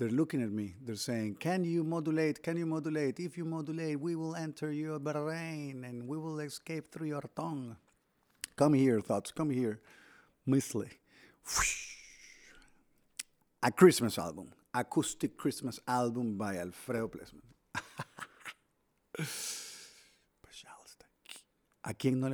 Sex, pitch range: male, 110-155 Hz